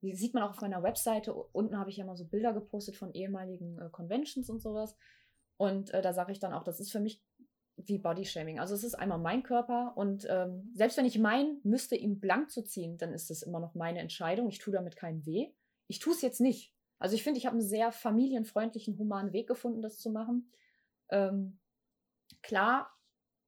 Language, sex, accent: German, female, German